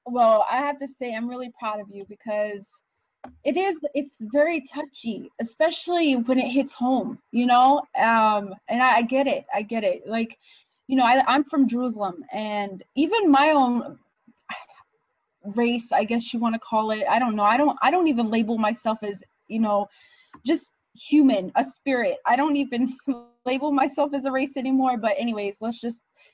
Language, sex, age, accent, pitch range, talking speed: English, female, 20-39, American, 225-290 Hz, 185 wpm